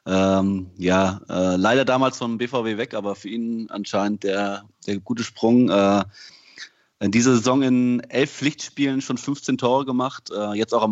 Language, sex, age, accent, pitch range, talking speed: German, male, 20-39, German, 100-125 Hz, 165 wpm